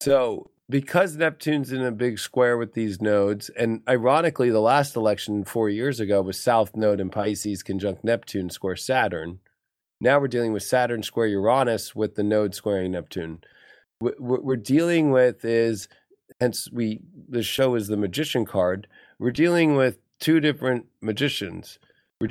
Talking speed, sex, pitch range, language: 160 wpm, male, 105-130 Hz, English